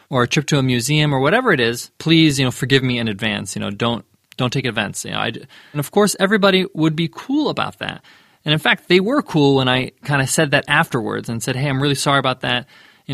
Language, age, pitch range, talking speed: English, 20-39, 130-180 Hz, 255 wpm